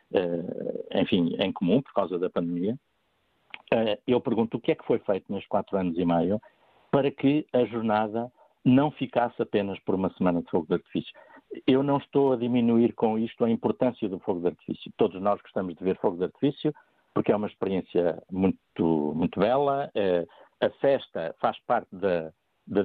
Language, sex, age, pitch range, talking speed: Portuguese, male, 50-69, 100-130 Hz, 185 wpm